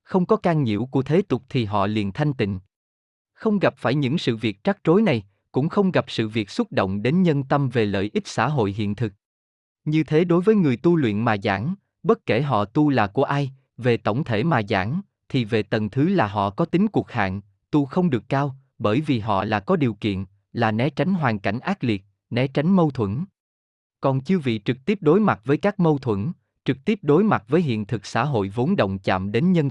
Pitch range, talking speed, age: 110-165 Hz, 235 wpm, 20-39